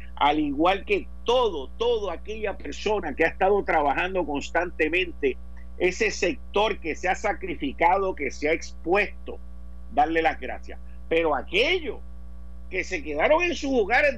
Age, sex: 50-69, male